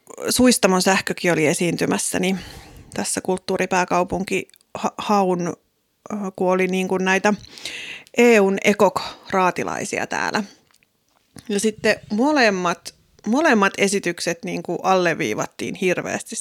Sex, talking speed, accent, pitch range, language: female, 75 wpm, native, 180-200 Hz, Finnish